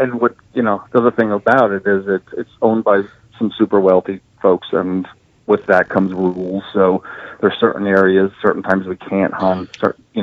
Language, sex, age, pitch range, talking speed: English, male, 40-59, 95-105 Hz, 190 wpm